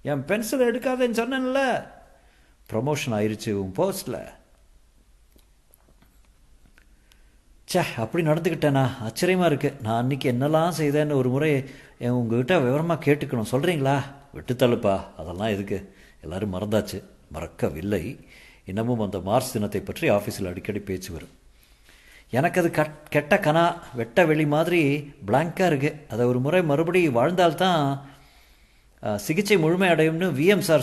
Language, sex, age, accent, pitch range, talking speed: Tamil, male, 50-69, native, 110-155 Hz, 115 wpm